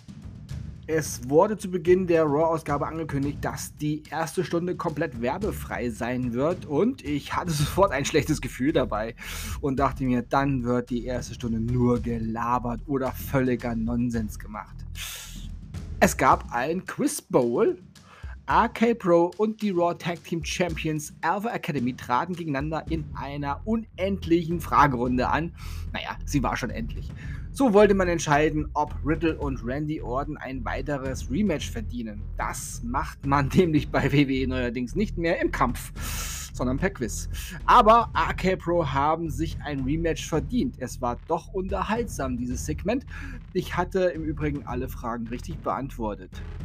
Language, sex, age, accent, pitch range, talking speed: German, male, 30-49, German, 120-170 Hz, 145 wpm